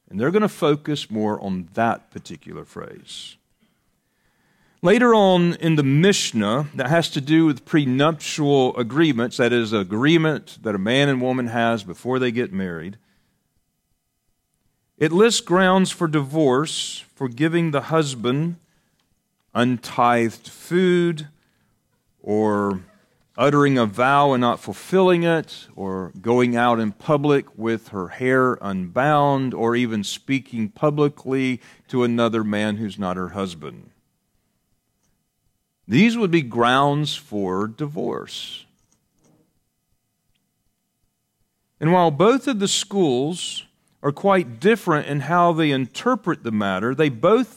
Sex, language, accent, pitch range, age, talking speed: male, English, American, 115-165 Hz, 40-59, 120 wpm